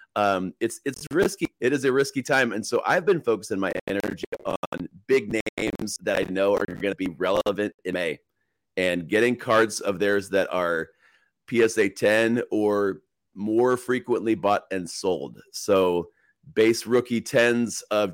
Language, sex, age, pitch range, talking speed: English, male, 30-49, 100-125 Hz, 160 wpm